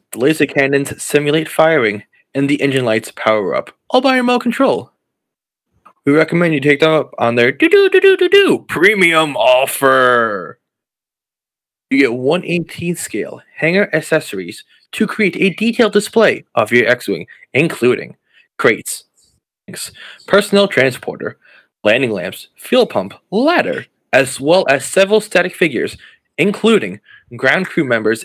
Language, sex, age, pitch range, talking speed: English, male, 20-39, 140-205 Hz, 135 wpm